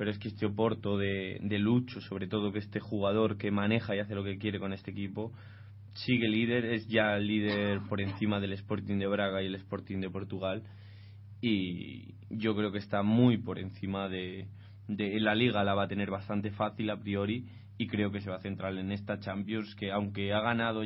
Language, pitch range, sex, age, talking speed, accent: Spanish, 100-120 Hz, male, 20-39, 215 wpm, Spanish